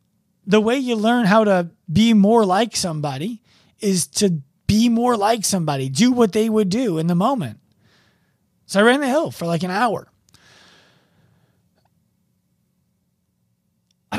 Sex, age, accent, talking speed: male, 30-49, American, 145 wpm